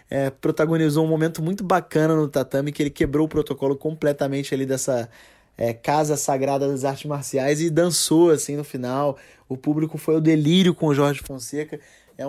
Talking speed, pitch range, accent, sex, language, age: 180 wpm, 140-160 Hz, Brazilian, male, Portuguese, 20-39